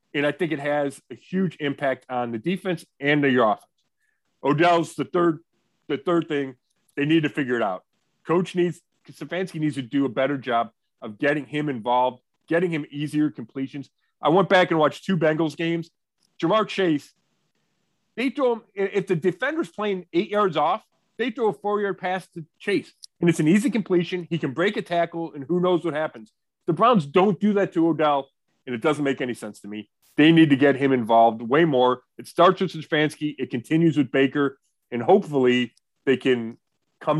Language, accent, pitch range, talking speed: English, American, 135-180 Hz, 200 wpm